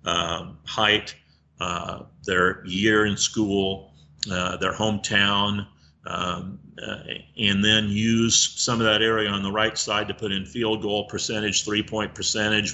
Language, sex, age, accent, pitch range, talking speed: English, male, 50-69, American, 95-110 Hz, 155 wpm